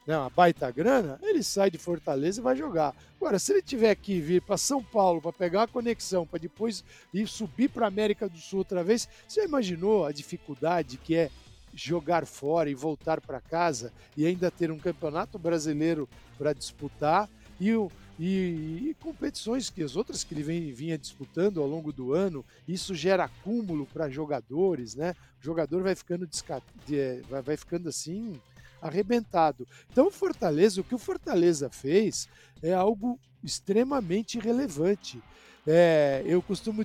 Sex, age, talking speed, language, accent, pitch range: male, 60-79, 165 wpm, Portuguese, Brazilian, 150-200 Hz